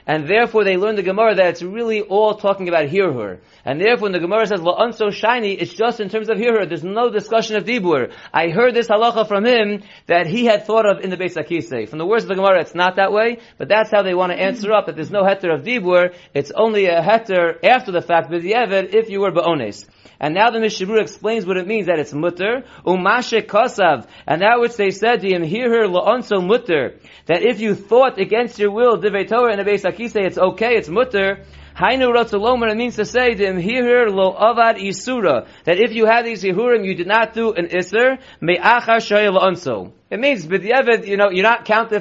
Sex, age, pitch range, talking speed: male, 40-59, 185-230 Hz, 215 wpm